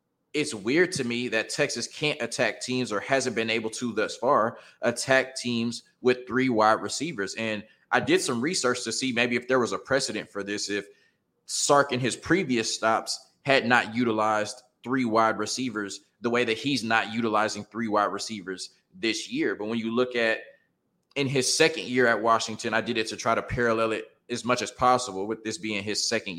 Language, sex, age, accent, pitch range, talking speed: English, male, 20-39, American, 105-125 Hz, 200 wpm